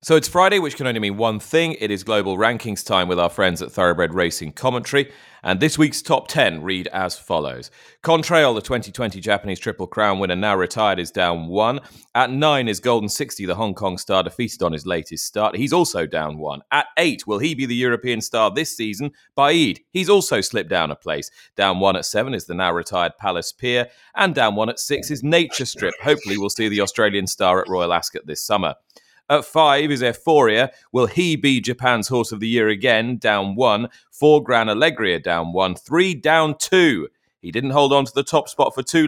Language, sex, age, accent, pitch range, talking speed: English, male, 30-49, British, 100-150 Hz, 215 wpm